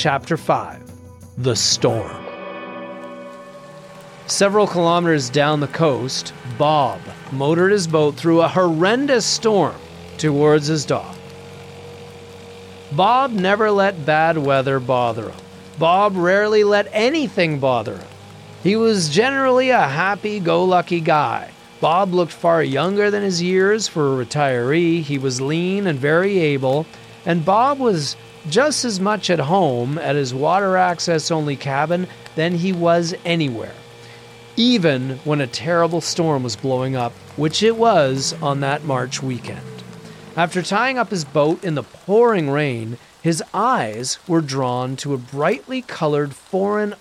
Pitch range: 130-190 Hz